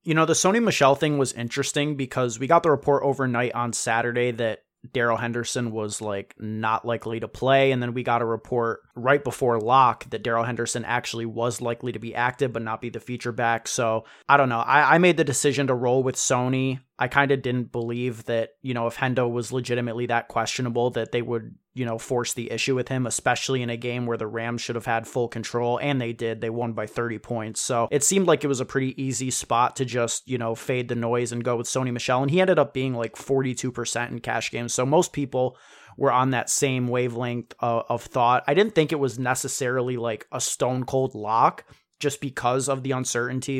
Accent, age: American, 20-39